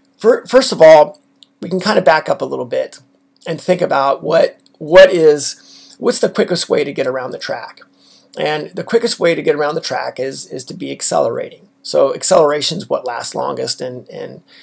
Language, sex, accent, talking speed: English, male, American, 195 wpm